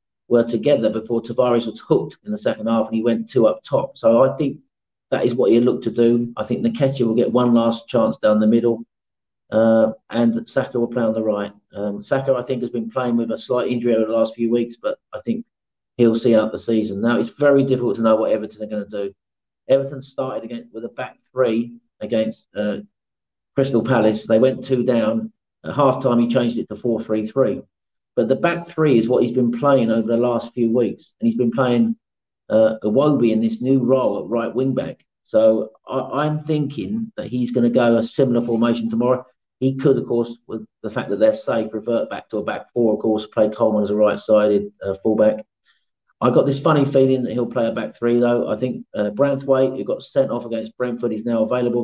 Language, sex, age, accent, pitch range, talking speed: English, male, 40-59, British, 110-125 Hz, 225 wpm